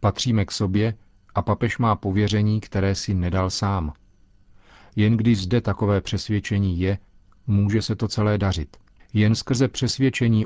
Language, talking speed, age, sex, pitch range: Czech, 145 wpm, 40-59, male, 95-110 Hz